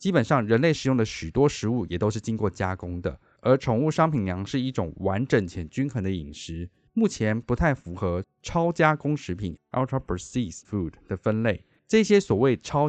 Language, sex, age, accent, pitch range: Chinese, male, 20-39, native, 90-135 Hz